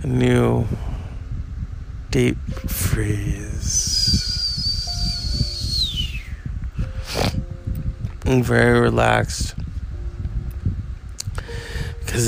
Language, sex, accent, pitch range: English, male, American, 90-120 Hz